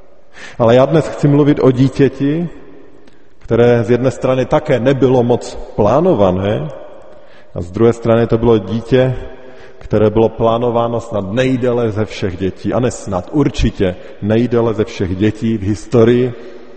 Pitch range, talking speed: 105-130 Hz, 140 wpm